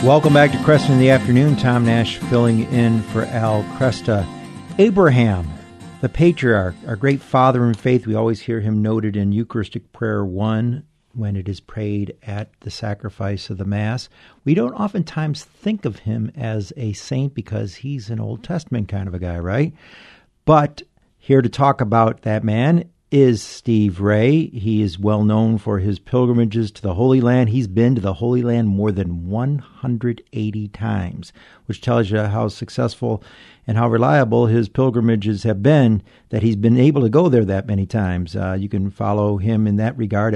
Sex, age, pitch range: male, 50-69, 105-125 Hz